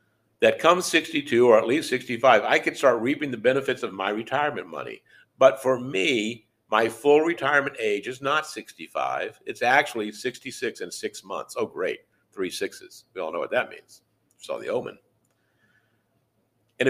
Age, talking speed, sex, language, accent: 60-79, 165 wpm, male, English, American